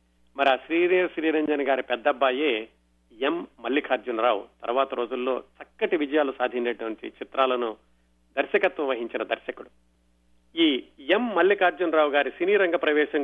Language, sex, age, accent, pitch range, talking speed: Telugu, male, 40-59, native, 120-160 Hz, 115 wpm